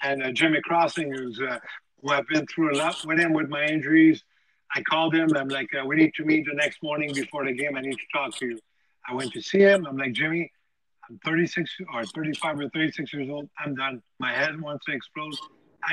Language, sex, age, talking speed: English, male, 50-69, 225 wpm